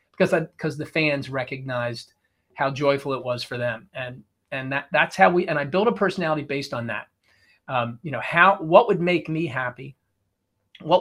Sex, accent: male, American